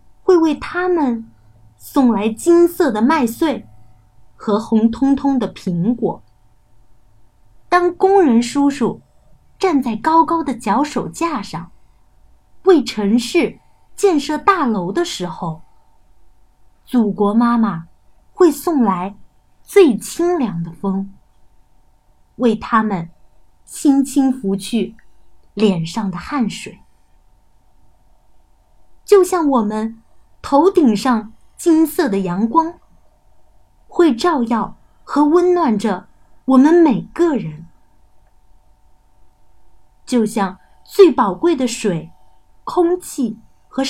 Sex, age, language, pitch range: female, 30-49, Chinese, 190-310 Hz